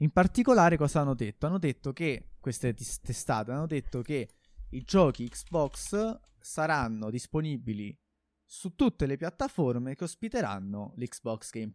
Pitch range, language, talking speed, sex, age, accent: 115-170 Hz, Italian, 150 wpm, male, 20-39, native